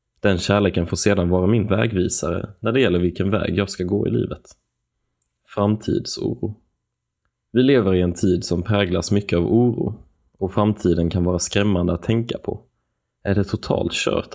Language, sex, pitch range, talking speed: Swedish, male, 90-110 Hz, 165 wpm